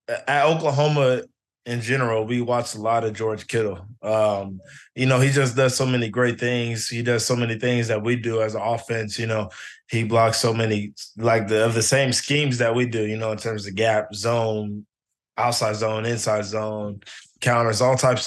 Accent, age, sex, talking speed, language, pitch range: American, 20-39, male, 200 wpm, English, 110-130 Hz